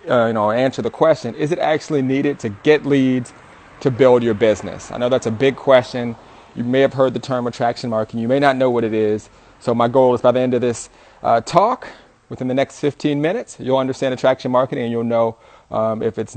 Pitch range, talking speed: 120-140 Hz, 235 wpm